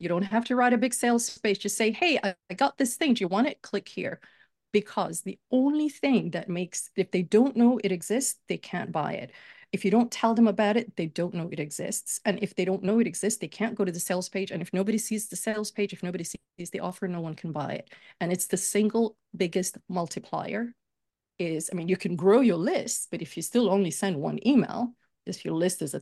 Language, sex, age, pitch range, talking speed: English, female, 40-59, 175-225 Hz, 250 wpm